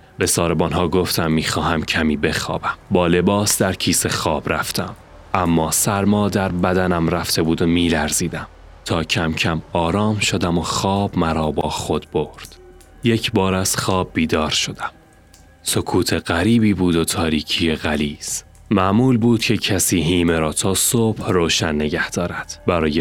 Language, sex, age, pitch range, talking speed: Persian, male, 30-49, 85-110 Hz, 145 wpm